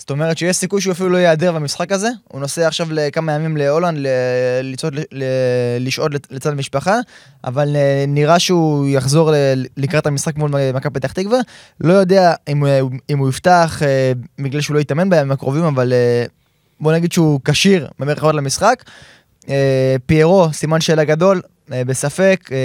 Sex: male